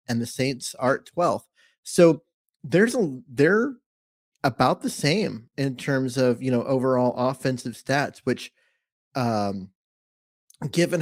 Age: 30-49